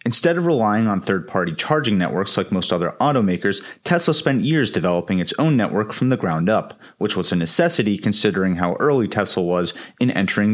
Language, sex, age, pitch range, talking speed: English, male, 30-49, 95-130 Hz, 190 wpm